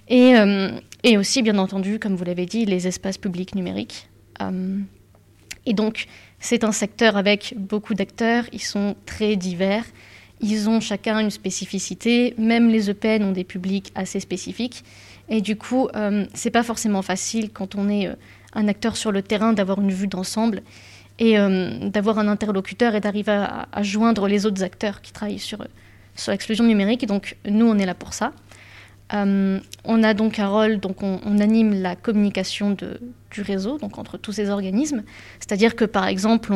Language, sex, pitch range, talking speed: French, female, 195-220 Hz, 185 wpm